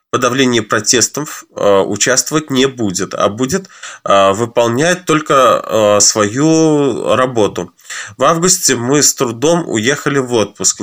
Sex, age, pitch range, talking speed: male, 20-39, 110-150 Hz, 105 wpm